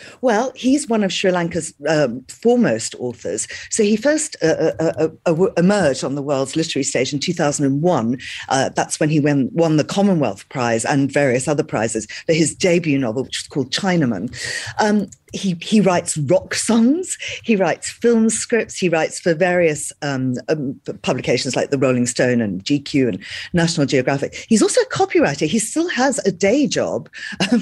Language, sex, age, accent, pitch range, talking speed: English, female, 40-59, British, 150-220 Hz, 175 wpm